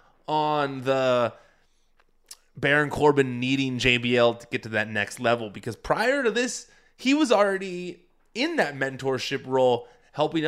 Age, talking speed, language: 20-39, 135 wpm, English